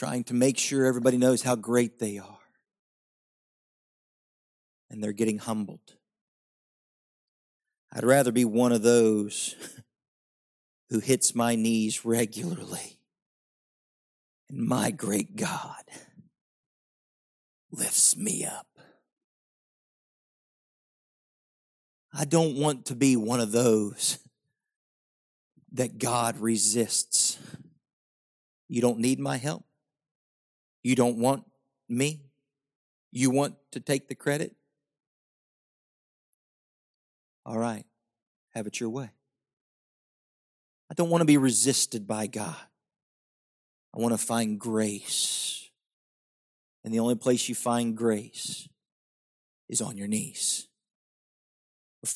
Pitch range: 110-135 Hz